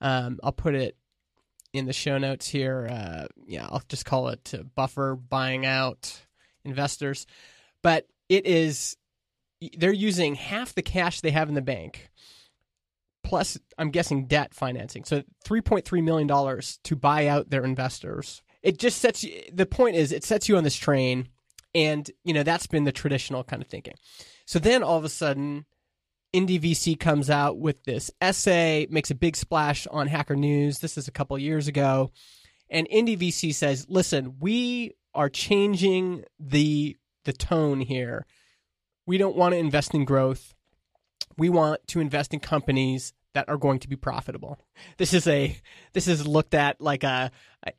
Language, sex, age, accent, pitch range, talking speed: English, male, 20-39, American, 135-170 Hz, 175 wpm